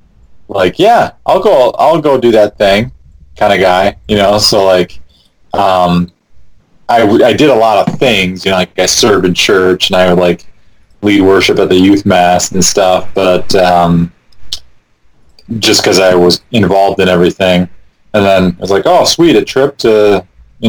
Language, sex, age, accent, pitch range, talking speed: English, male, 30-49, American, 90-105 Hz, 185 wpm